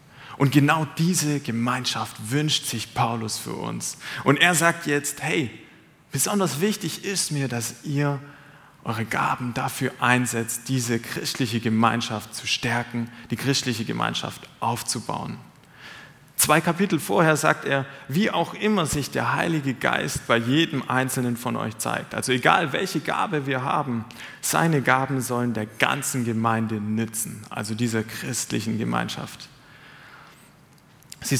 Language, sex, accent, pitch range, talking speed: German, male, German, 115-150 Hz, 130 wpm